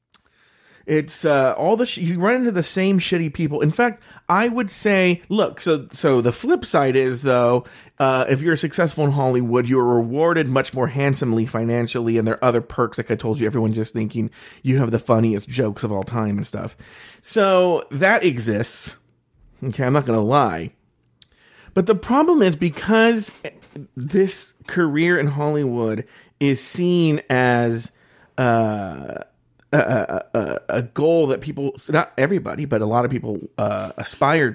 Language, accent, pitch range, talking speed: English, American, 120-170 Hz, 170 wpm